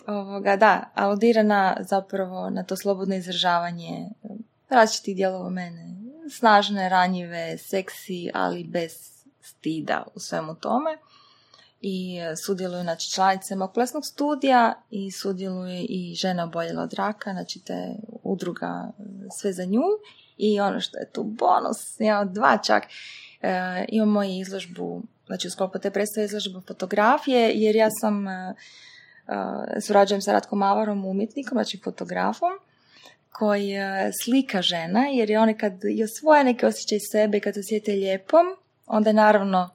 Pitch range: 190-225 Hz